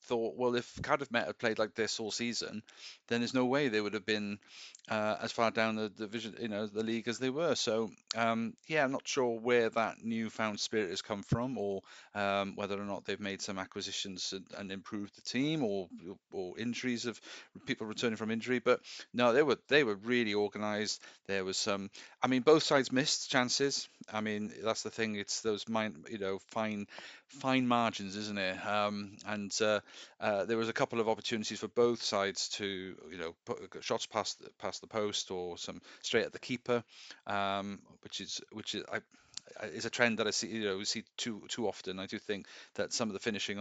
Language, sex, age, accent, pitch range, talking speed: English, male, 40-59, British, 100-115 Hz, 215 wpm